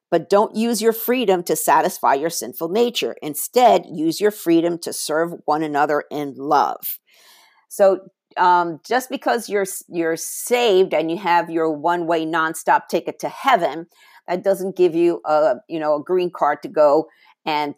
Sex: female